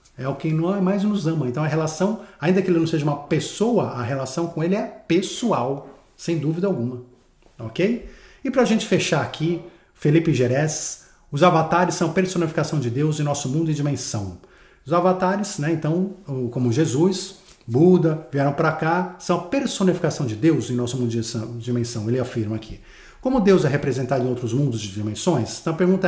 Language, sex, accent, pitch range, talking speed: Portuguese, male, Brazilian, 125-185 Hz, 180 wpm